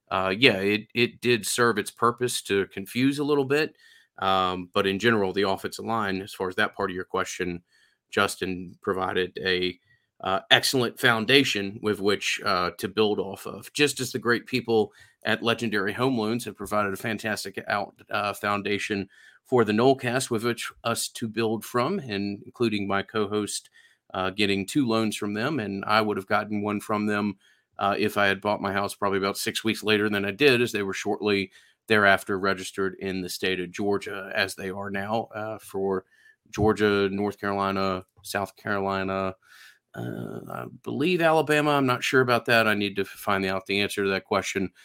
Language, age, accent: English, 40-59, American